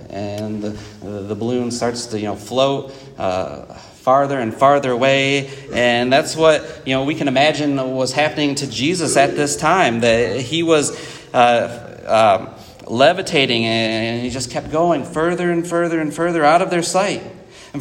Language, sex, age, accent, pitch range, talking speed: English, male, 30-49, American, 120-180 Hz, 165 wpm